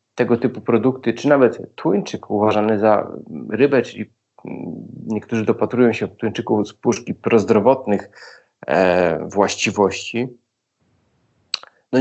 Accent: native